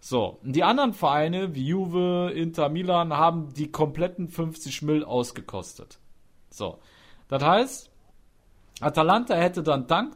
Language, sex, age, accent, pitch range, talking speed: German, male, 40-59, German, 125-185 Hz, 125 wpm